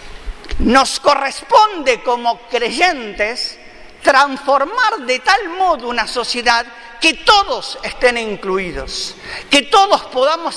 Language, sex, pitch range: Spanish, male, 235-330 Hz